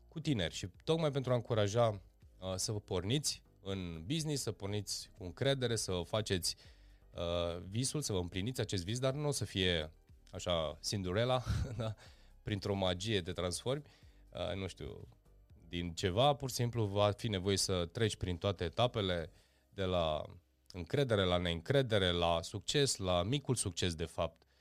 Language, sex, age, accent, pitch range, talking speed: Romanian, male, 20-39, native, 90-125 Hz, 150 wpm